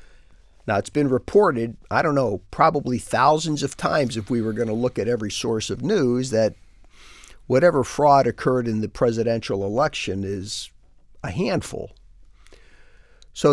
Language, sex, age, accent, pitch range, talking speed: English, male, 50-69, American, 100-125 Hz, 150 wpm